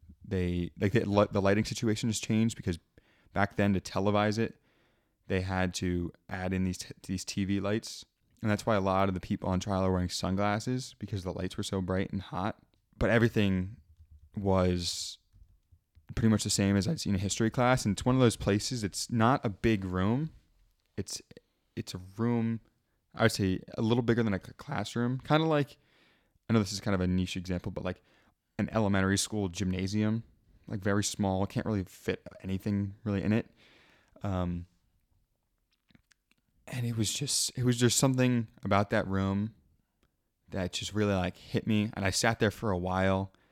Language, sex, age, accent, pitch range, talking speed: English, male, 20-39, American, 95-115 Hz, 185 wpm